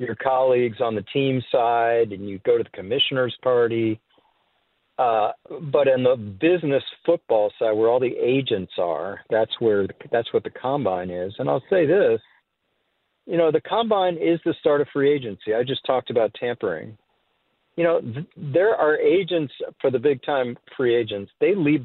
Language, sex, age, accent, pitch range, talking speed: English, male, 50-69, American, 120-185 Hz, 175 wpm